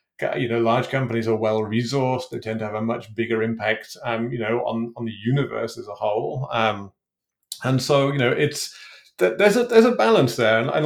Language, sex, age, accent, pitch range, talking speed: English, male, 30-49, British, 115-130 Hz, 215 wpm